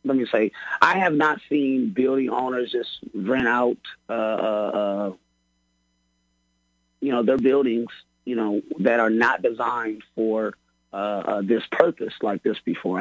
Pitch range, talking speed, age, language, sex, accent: 100-120 Hz, 150 wpm, 30-49, English, male, American